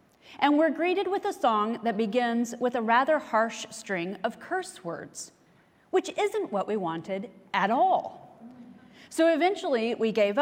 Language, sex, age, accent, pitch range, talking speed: English, female, 30-49, American, 195-270 Hz, 155 wpm